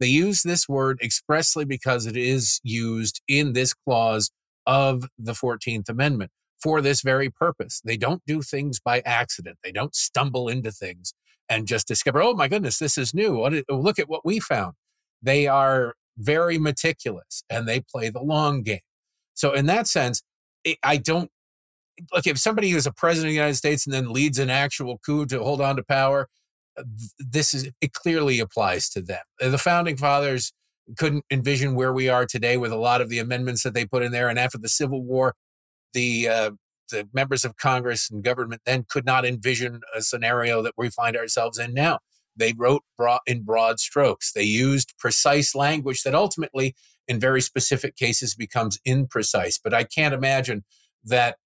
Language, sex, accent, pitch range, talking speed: English, male, American, 115-145 Hz, 180 wpm